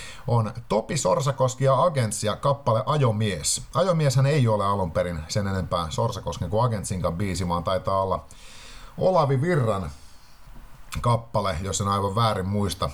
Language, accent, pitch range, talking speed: Finnish, native, 100-130 Hz, 130 wpm